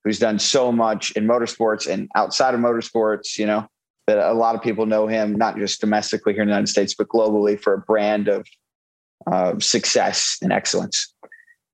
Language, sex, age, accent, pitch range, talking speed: English, male, 30-49, American, 100-115 Hz, 190 wpm